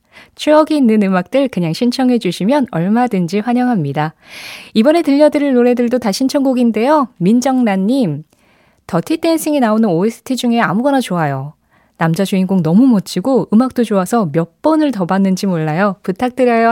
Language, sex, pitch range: Korean, female, 175-250 Hz